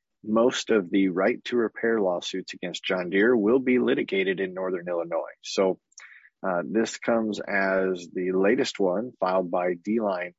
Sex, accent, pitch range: male, American, 95-115 Hz